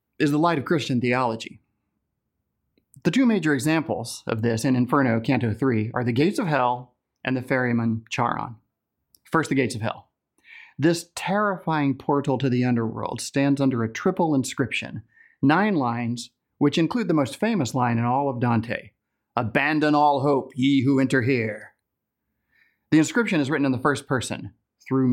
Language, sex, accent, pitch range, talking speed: English, male, American, 115-155 Hz, 165 wpm